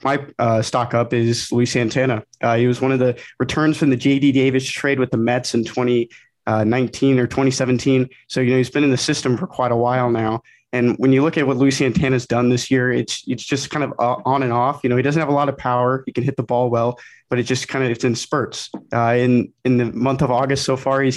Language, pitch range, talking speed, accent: English, 120-135 Hz, 265 wpm, American